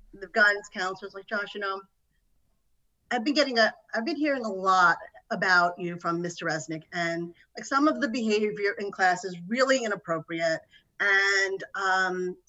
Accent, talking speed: American, 165 wpm